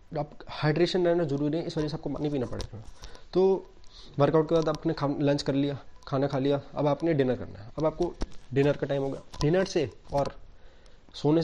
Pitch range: 125-160 Hz